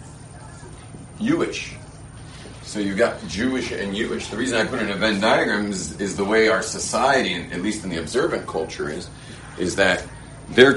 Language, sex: English, male